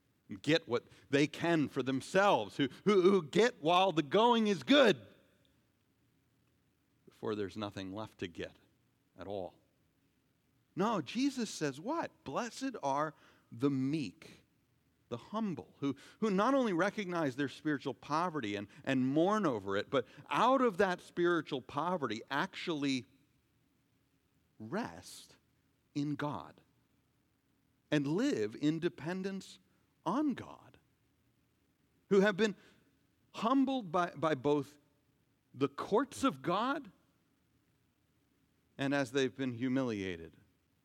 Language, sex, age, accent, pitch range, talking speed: English, male, 50-69, American, 130-185 Hz, 115 wpm